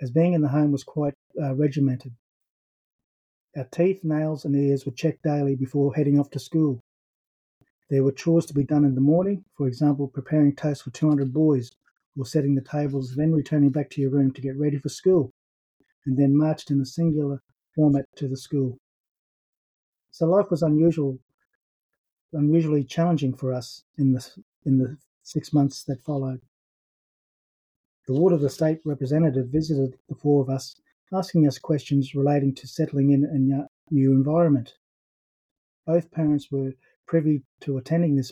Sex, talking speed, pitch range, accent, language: male, 170 wpm, 135-155 Hz, Australian, English